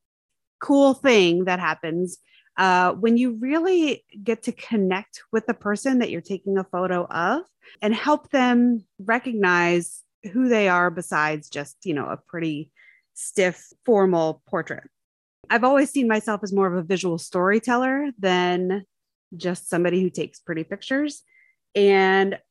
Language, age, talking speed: English, 30-49, 145 wpm